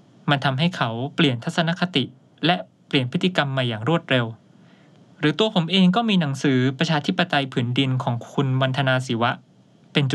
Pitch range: 135-175 Hz